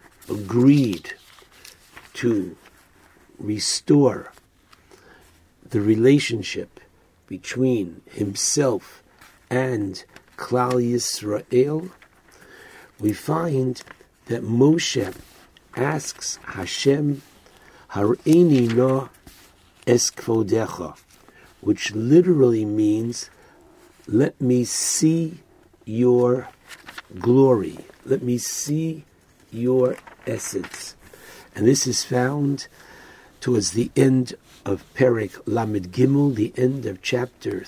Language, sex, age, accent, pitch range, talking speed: English, male, 60-79, American, 110-140 Hz, 75 wpm